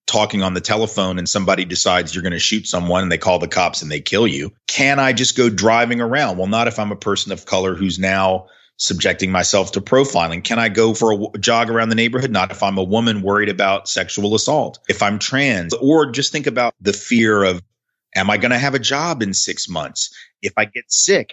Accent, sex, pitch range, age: American, male, 100-130 Hz, 30-49